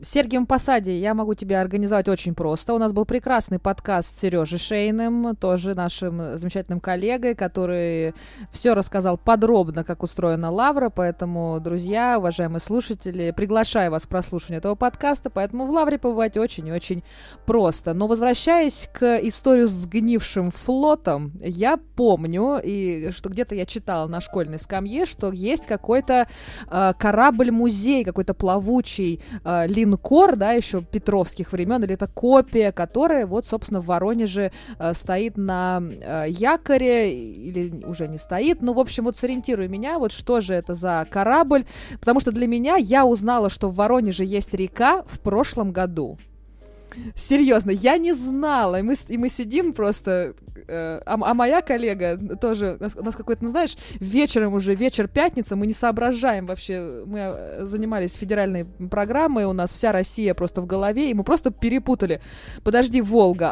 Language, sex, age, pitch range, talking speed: Russian, female, 20-39, 185-245 Hz, 155 wpm